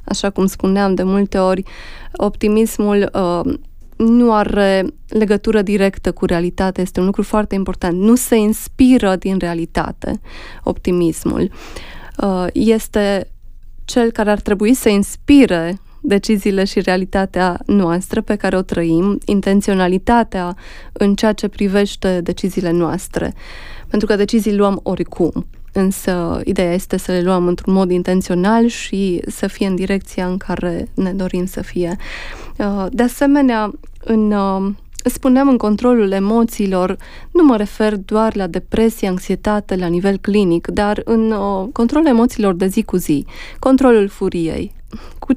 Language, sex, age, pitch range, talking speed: Romanian, female, 20-39, 185-220 Hz, 130 wpm